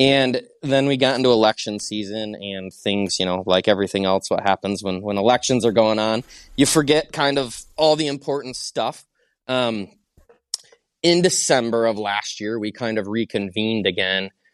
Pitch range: 95-115 Hz